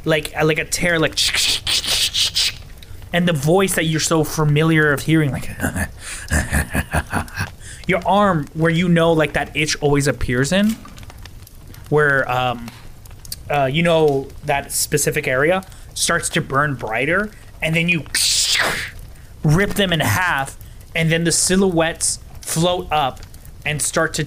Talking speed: 135 wpm